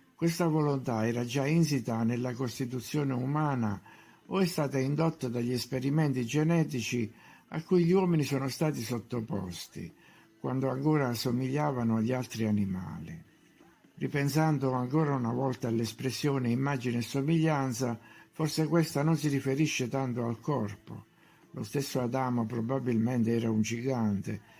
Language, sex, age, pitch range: Italian, male, 60-79, 115-150 Hz